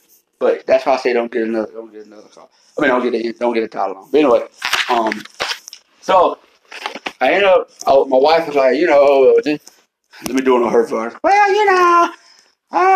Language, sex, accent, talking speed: English, male, American, 220 wpm